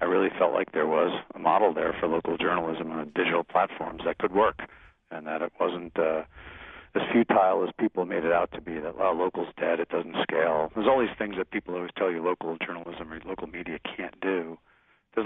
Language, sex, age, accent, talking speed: English, male, 40-59, American, 215 wpm